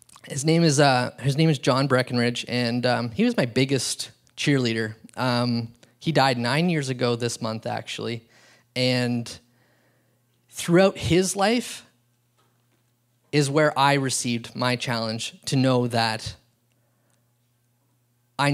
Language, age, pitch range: English, 20-39, 120-145 Hz